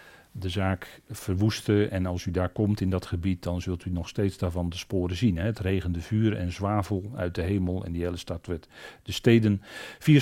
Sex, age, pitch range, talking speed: male, 40-59, 95-125 Hz, 215 wpm